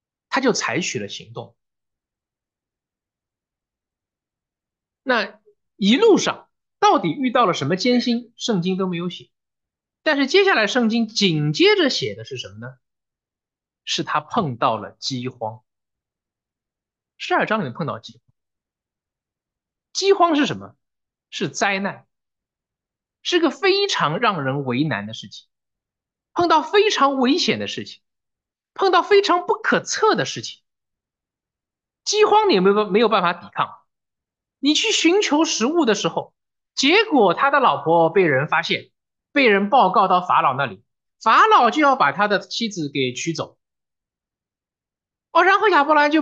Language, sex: English, male